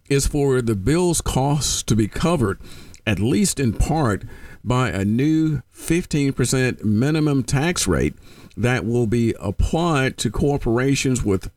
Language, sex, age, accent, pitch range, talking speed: English, male, 50-69, American, 110-145 Hz, 135 wpm